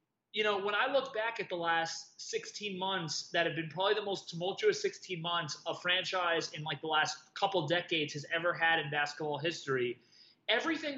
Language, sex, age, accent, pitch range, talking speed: English, male, 20-39, American, 170-235 Hz, 190 wpm